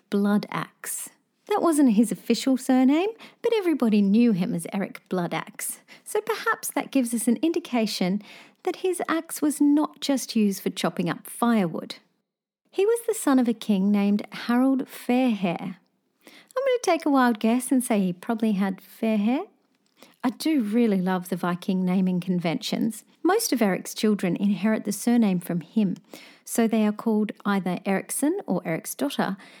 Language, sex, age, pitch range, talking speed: English, female, 40-59, 195-270 Hz, 165 wpm